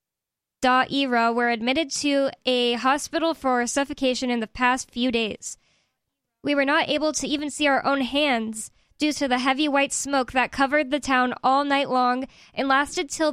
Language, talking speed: English, 170 wpm